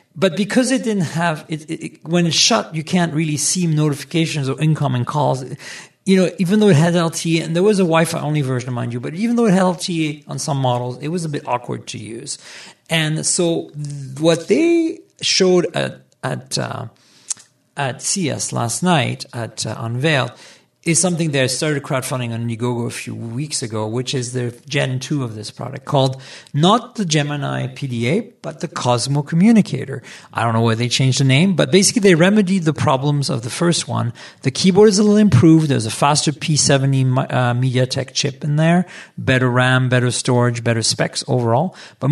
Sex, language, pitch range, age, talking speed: male, English, 125-170 Hz, 50-69, 195 wpm